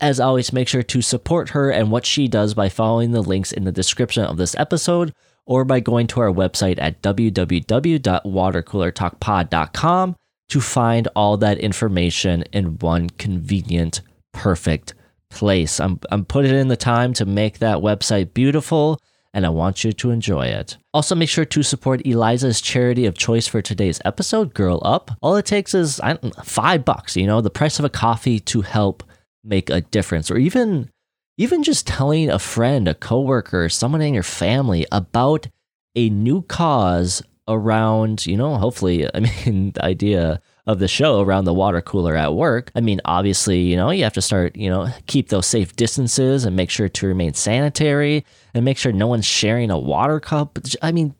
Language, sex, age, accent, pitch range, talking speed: English, male, 20-39, American, 95-135 Hz, 185 wpm